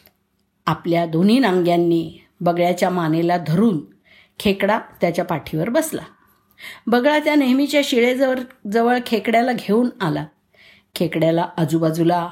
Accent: native